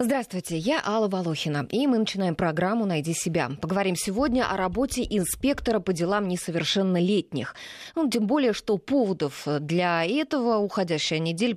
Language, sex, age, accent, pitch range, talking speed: Russian, female, 20-39, native, 165-230 Hz, 140 wpm